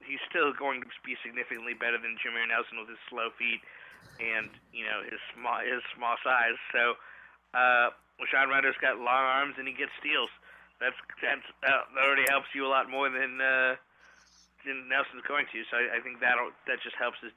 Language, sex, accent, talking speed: English, male, American, 195 wpm